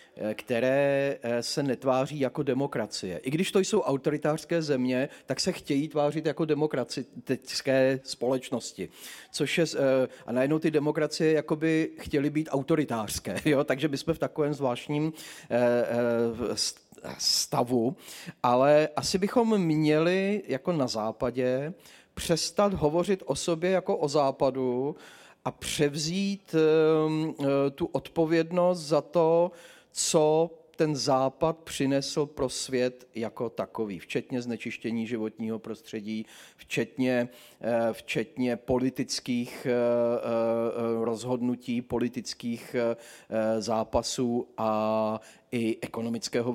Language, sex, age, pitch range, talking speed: Czech, male, 40-59, 120-155 Hz, 100 wpm